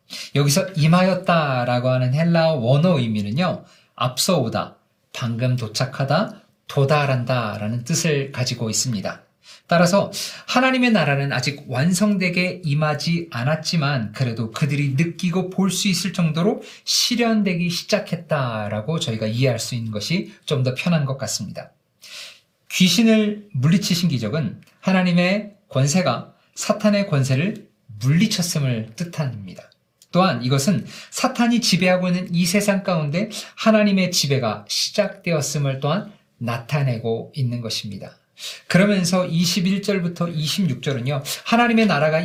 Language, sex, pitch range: Korean, male, 135-195 Hz